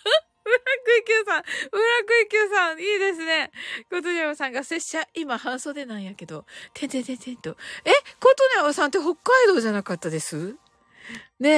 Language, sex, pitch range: Japanese, female, 285-420 Hz